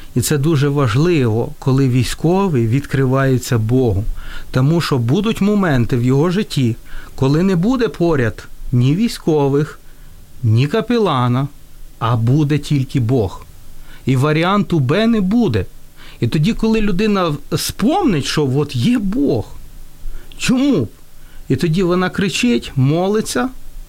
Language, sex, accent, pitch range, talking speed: Ukrainian, male, native, 130-190 Hz, 120 wpm